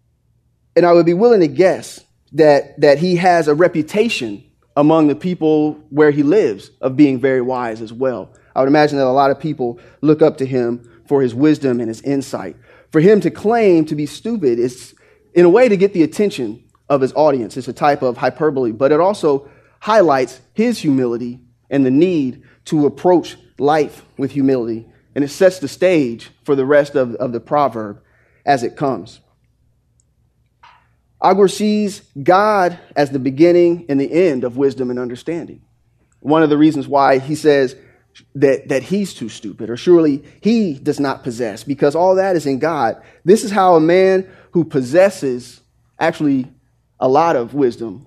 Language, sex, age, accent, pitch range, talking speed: English, male, 30-49, American, 125-165 Hz, 180 wpm